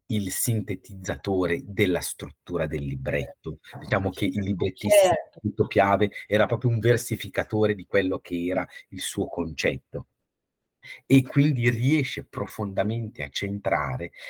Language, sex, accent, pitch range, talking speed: Italian, male, native, 90-120 Hz, 120 wpm